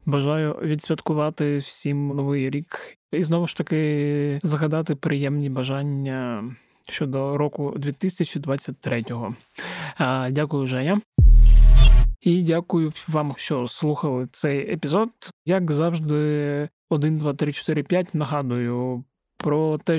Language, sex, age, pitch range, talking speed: Ukrainian, male, 20-39, 140-165 Hz, 100 wpm